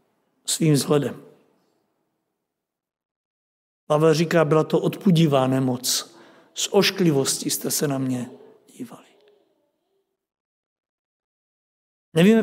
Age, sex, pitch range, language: 60-79, male, 160-190 Hz, Czech